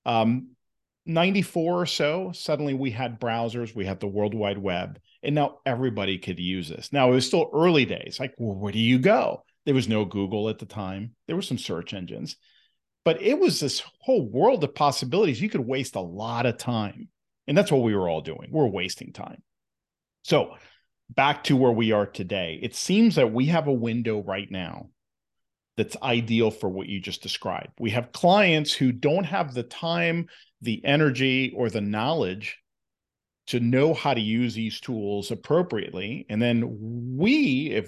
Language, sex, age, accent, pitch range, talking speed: English, male, 40-59, American, 110-145 Hz, 185 wpm